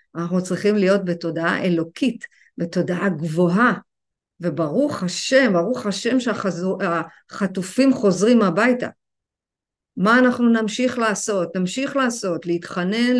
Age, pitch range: 50-69, 180-255 Hz